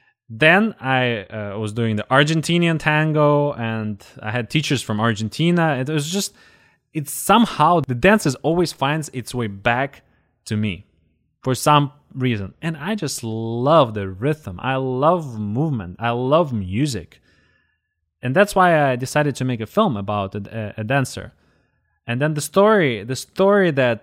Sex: male